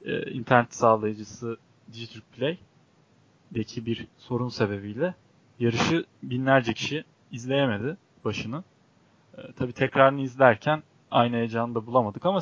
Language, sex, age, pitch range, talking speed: Turkish, male, 30-49, 120-155 Hz, 100 wpm